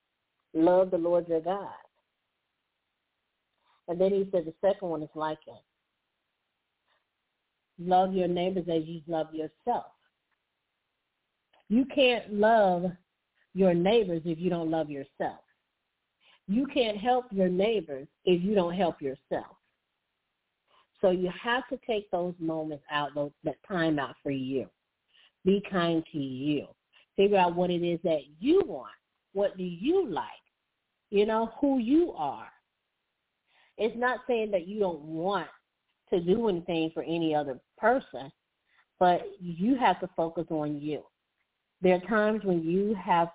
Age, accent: 50-69, American